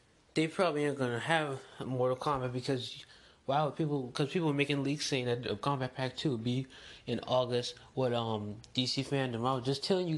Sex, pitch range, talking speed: male, 105-135 Hz, 195 wpm